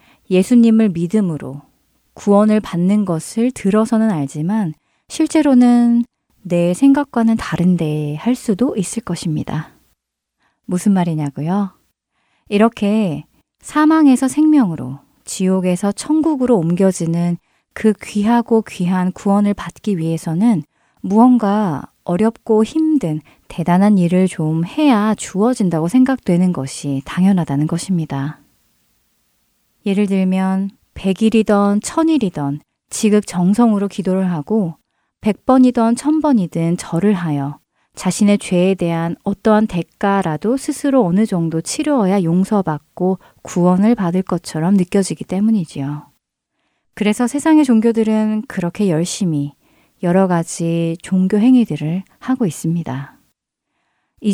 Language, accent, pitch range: Korean, native, 170-225 Hz